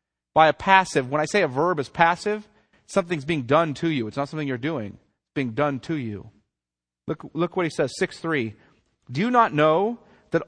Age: 40-59